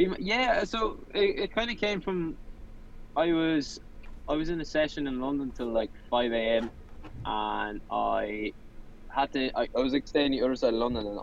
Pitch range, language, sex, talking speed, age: 105-125 Hz, English, male, 200 wpm, 10-29